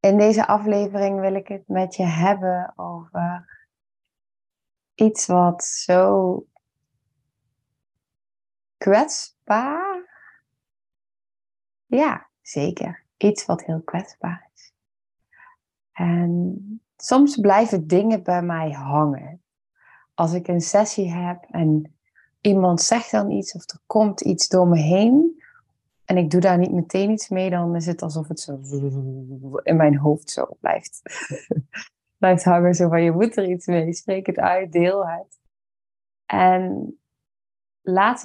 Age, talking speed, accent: 20-39, 125 wpm, Dutch